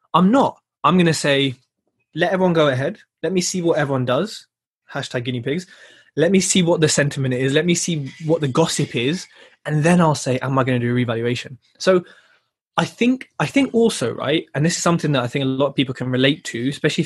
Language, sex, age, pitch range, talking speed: English, male, 20-39, 130-170 Hz, 230 wpm